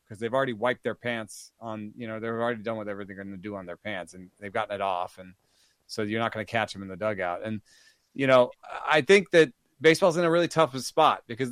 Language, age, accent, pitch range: English, 30-49, American, 115-150 Hz